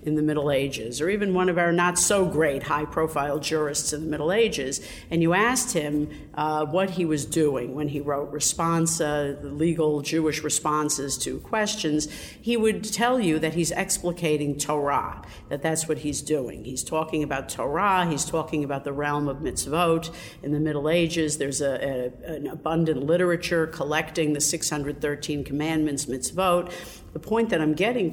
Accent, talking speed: American, 160 wpm